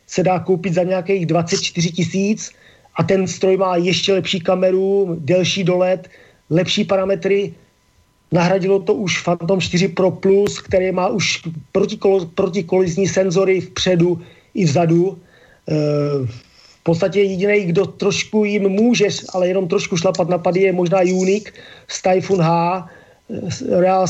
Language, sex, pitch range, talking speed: Slovak, male, 170-195 Hz, 130 wpm